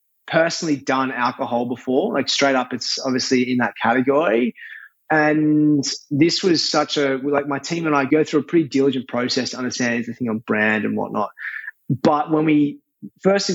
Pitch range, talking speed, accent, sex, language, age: 120-150 Hz, 175 wpm, Australian, male, English, 20-39